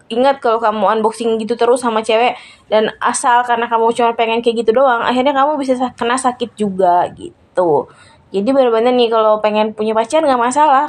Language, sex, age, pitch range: Indonesian, female, 20-39, 225-255 Hz